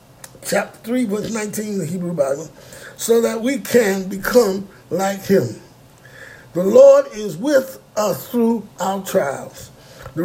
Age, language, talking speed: 60-79, English, 135 wpm